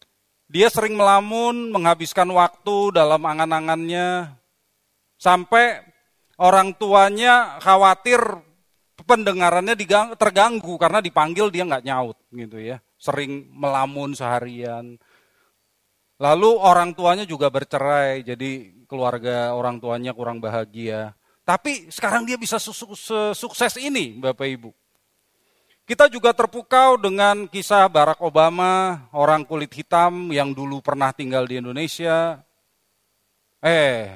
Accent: native